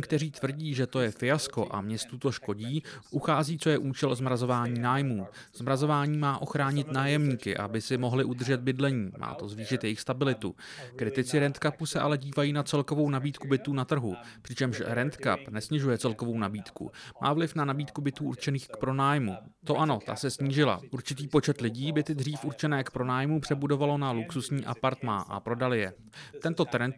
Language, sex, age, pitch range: English, male, 30-49, 120-150 Hz